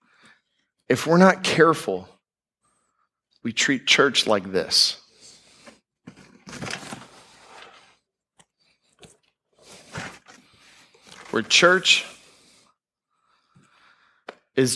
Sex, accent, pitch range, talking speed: male, American, 115-135 Hz, 50 wpm